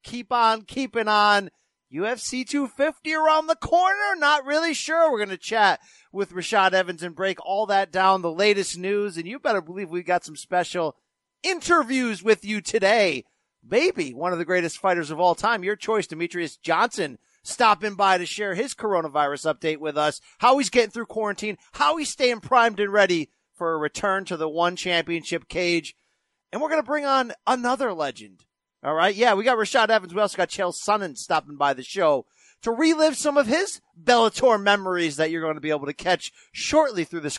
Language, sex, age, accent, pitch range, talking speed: English, male, 40-59, American, 155-225 Hz, 195 wpm